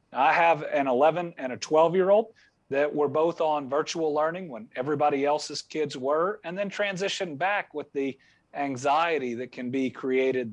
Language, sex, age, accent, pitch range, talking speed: English, male, 40-59, American, 145-185 Hz, 175 wpm